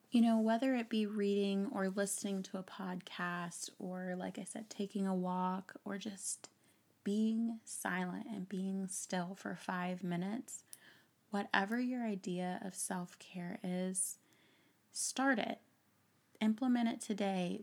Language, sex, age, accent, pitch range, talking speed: English, female, 20-39, American, 180-205 Hz, 135 wpm